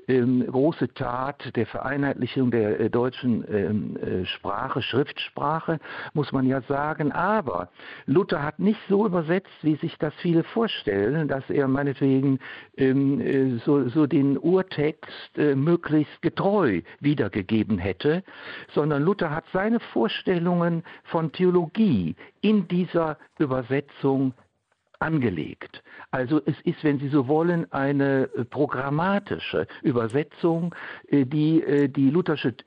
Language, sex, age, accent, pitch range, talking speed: German, male, 60-79, German, 120-160 Hz, 105 wpm